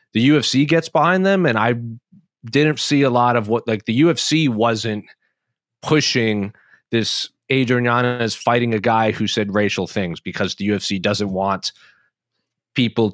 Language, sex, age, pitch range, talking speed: English, male, 30-49, 105-130 Hz, 155 wpm